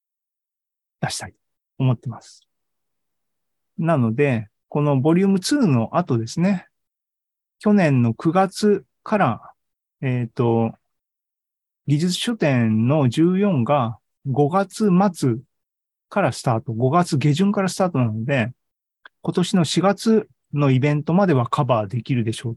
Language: Japanese